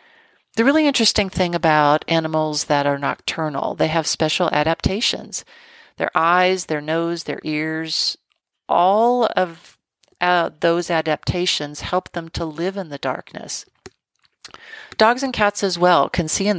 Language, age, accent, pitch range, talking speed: English, 40-59, American, 155-205 Hz, 140 wpm